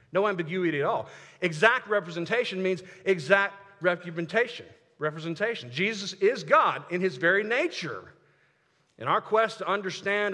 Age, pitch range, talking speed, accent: 50-69, 140-205 Hz, 120 wpm, American